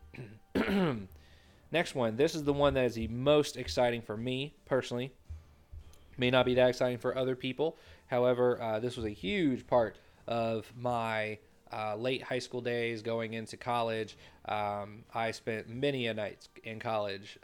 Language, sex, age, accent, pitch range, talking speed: English, male, 20-39, American, 110-125 Hz, 160 wpm